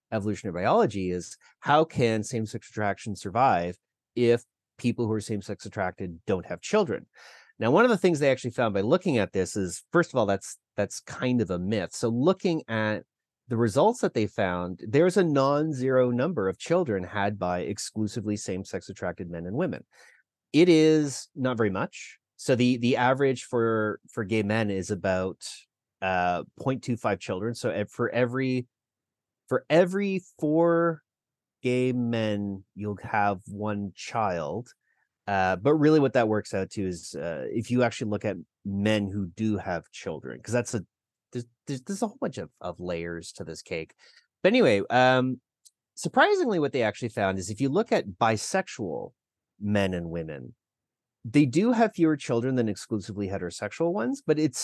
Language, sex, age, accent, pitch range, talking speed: English, male, 30-49, American, 100-130 Hz, 170 wpm